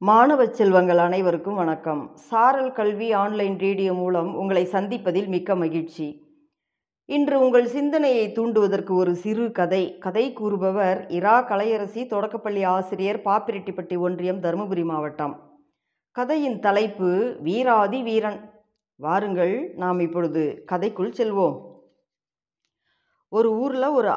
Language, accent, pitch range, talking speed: Tamil, native, 180-245 Hz, 105 wpm